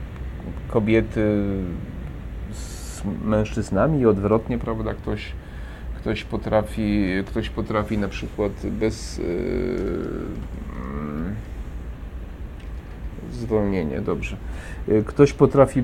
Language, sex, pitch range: Polish, male, 100-125 Hz